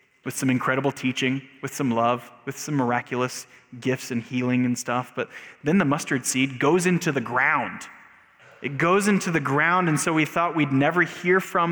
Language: English